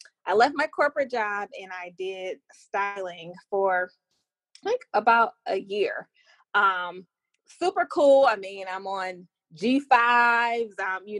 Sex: female